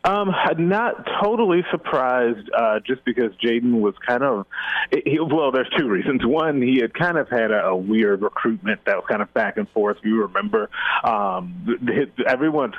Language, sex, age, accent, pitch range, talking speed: English, male, 30-49, American, 105-160 Hz, 165 wpm